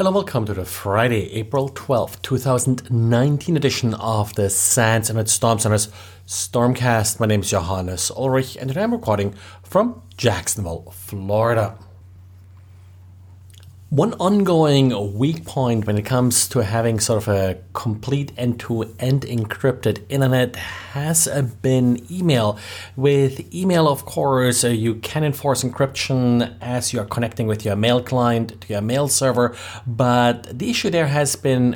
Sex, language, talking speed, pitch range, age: male, English, 140 wpm, 105-140 Hz, 30-49